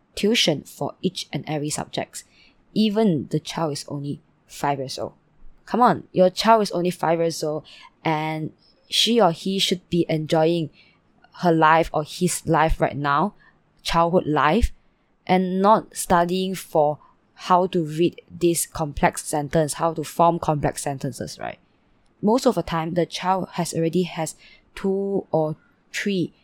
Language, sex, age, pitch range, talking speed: English, female, 20-39, 155-180 Hz, 150 wpm